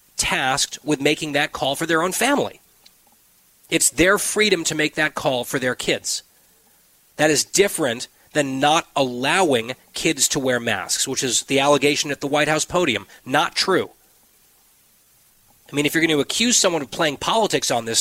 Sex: male